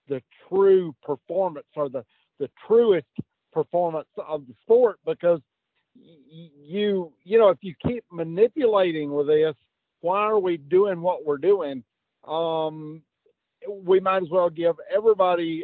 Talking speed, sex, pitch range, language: 135 wpm, male, 150-180 Hz, English